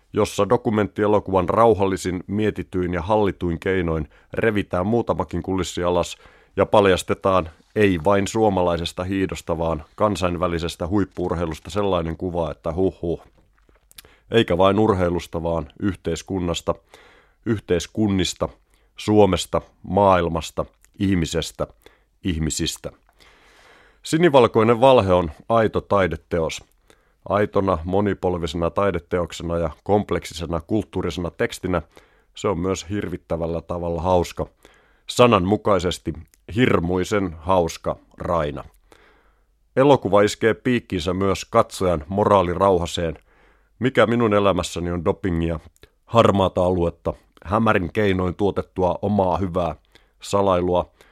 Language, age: Finnish, 30-49